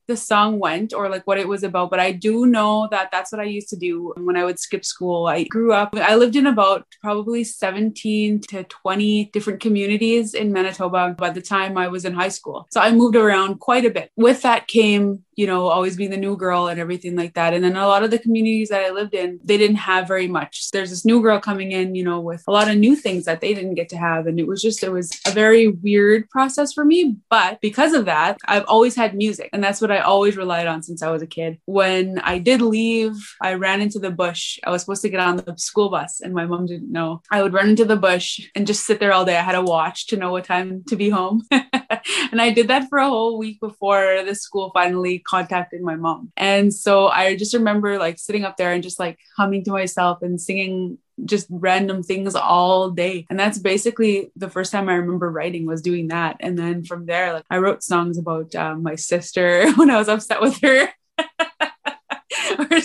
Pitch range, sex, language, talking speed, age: 180-225 Hz, female, English, 240 wpm, 20-39